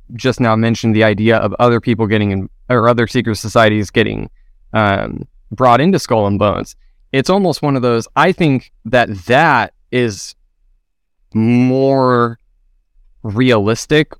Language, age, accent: English, 20-39, American